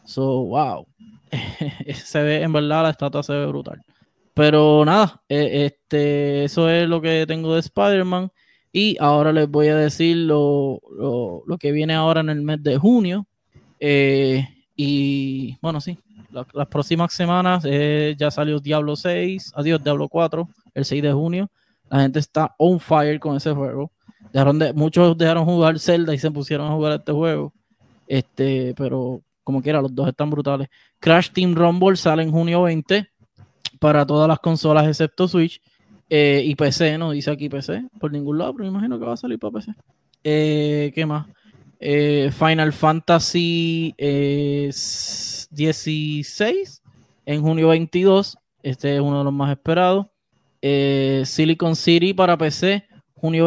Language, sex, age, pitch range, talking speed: Spanish, male, 20-39, 145-165 Hz, 160 wpm